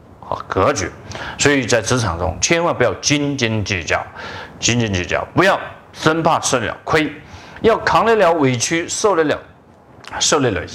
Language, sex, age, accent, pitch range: Chinese, male, 30-49, native, 130-205 Hz